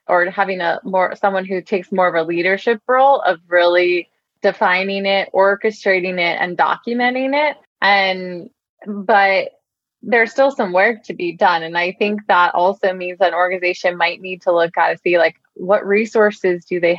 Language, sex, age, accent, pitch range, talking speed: English, female, 20-39, American, 175-205 Hz, 180 wpm